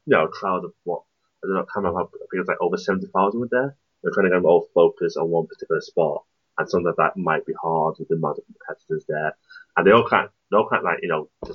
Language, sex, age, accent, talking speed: English, male, 30-49, British, 285 wpm